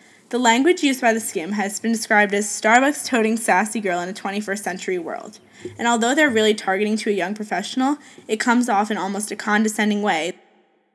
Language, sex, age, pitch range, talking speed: English, female, 10-29, 205-235 Hz, 190 wpm